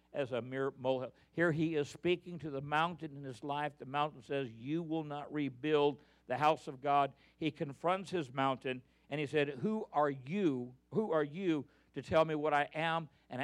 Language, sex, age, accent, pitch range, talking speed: English, male, 50-69, American, 135-160 Hz, 200 wpm